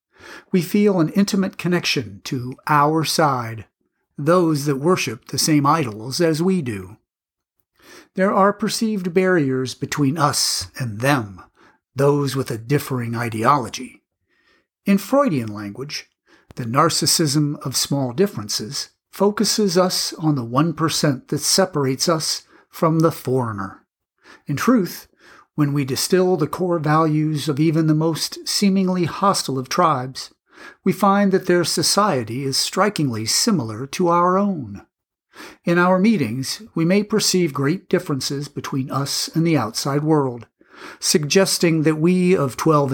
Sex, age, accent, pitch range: male, 50-69, American, 135-185 Hz